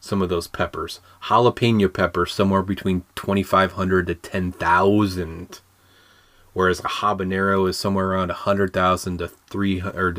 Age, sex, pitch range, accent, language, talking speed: 30-49, male, 90-105 Hz, American, English, 120 wpm